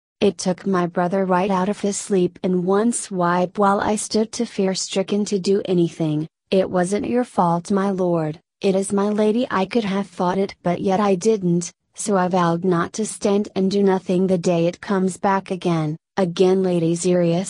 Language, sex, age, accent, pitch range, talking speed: English, female, 30-49, American, 175-200 Hz, 200 wpm